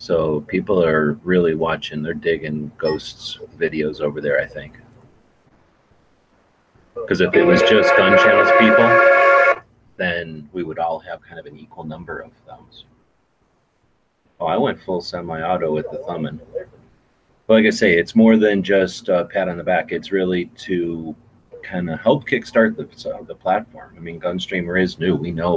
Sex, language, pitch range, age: male, English, 75-110 Hz, 30-49